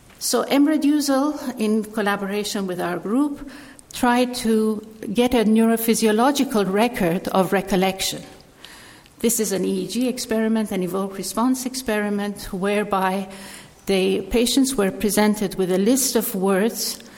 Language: English